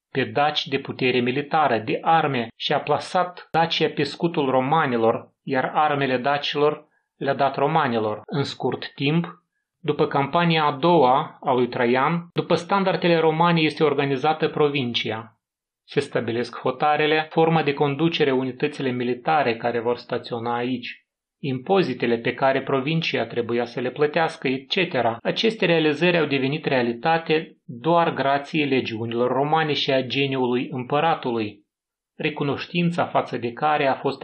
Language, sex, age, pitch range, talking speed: Romanian, male, 30-49, 125-160 Hz, 130 wpm